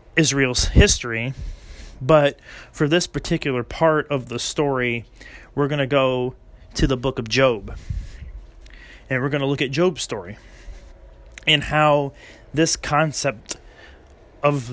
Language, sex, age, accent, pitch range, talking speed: English, male, 30-49, American, 115-150 Hz, 130 wpm